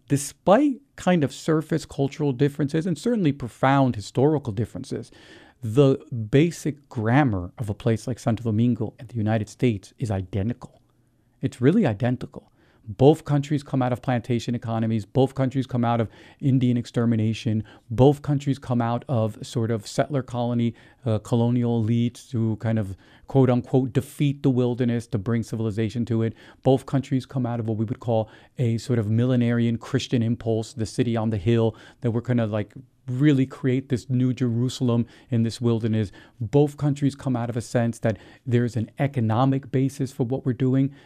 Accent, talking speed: American, 170 wpm